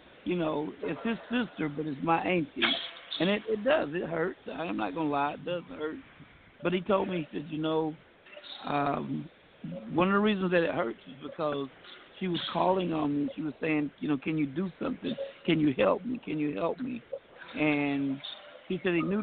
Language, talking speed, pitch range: English, 210 wpm, 150-190 Hz